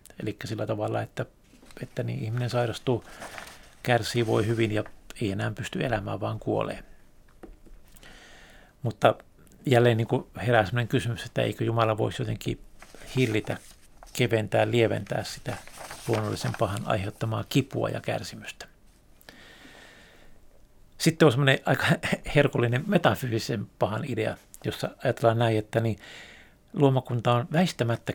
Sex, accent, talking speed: male, native, 120 wpm